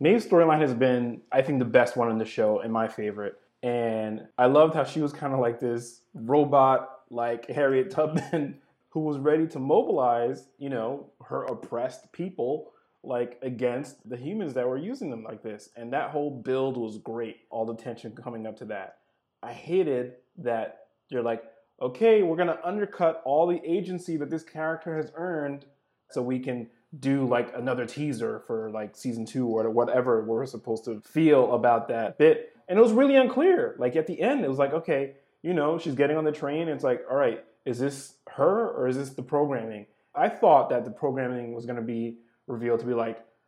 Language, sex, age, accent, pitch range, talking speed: English, male, 20-39, American, 120-155 Hz, 200 wpm